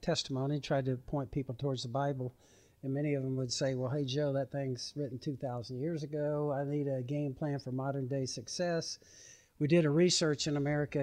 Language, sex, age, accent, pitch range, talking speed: English, male, 60-79, American, 125-140 Hz, 205 wpm